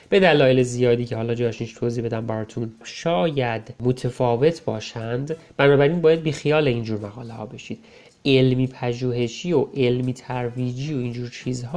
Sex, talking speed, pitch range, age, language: male, 150 wpm, 115-135 Hz, 30-49, Persian